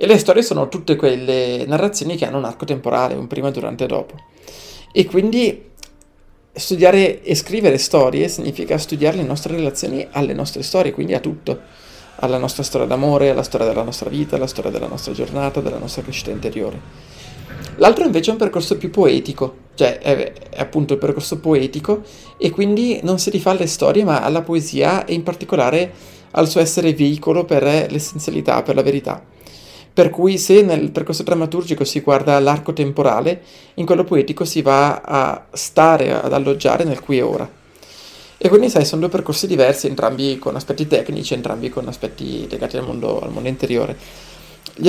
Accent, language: native, Italian